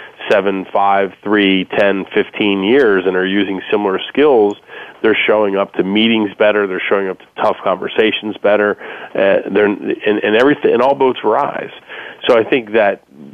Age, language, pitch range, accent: 30-49, English, 95-105 Hz, American